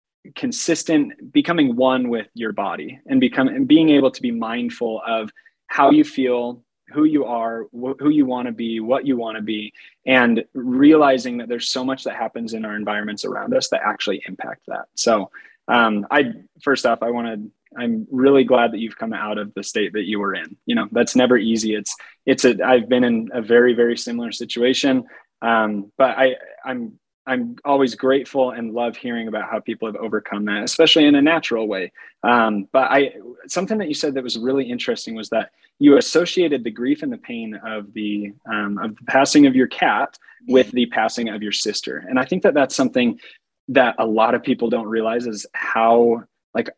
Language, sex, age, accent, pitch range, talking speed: English, male, 20-39, American, 115-145 Hz, 205 wpm